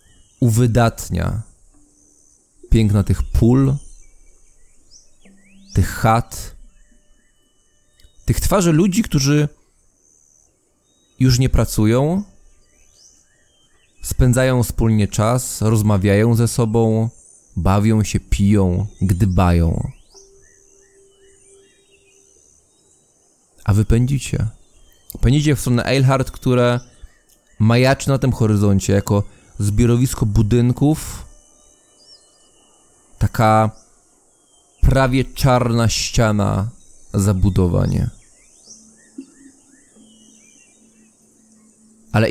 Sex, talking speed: male, 60 wpm